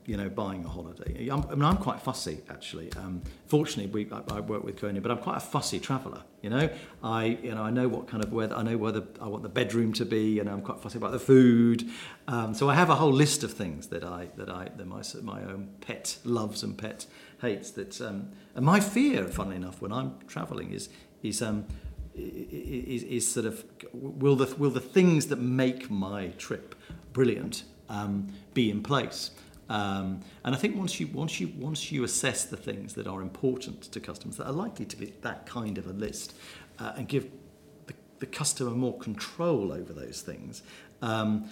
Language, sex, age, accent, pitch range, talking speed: English, male, 40-59, British, 100-125 Hz, 210 wpm